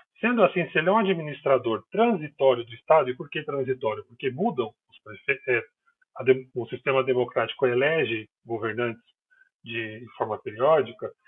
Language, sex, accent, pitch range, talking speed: Portuguese, male, Brazilian, 135-195 Hz, 130 wpm